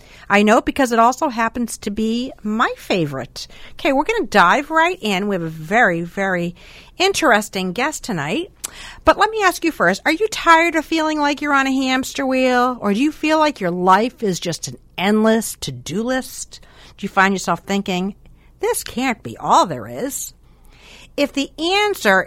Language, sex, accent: English, female, American